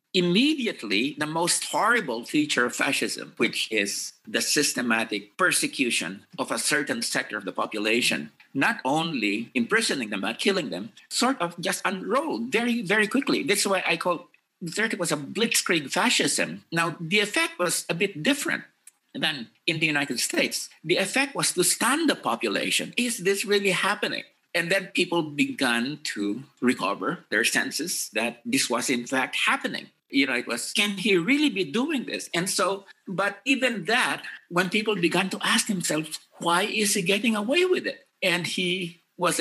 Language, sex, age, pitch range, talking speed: English, male, 50-69, 160-235 Hz, 165 wpm